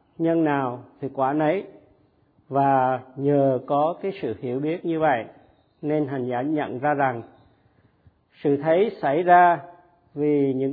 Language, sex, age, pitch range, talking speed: Vietnamese, male, 50-69, 130-175 Hz, 145 wpm